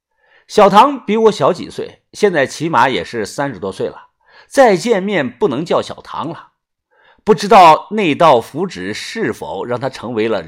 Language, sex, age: Chinese, male, 50-69